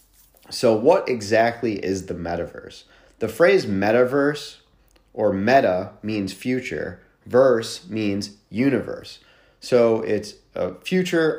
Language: English